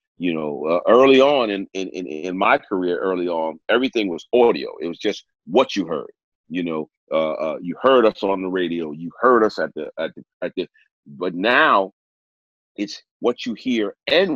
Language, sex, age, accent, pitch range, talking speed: English, male, 40-59, American, 90-130 Hz, 200 wpm